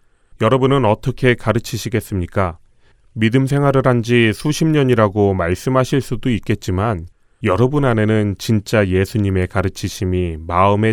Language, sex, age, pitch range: Korean, male, 30-49, 95-120 Hz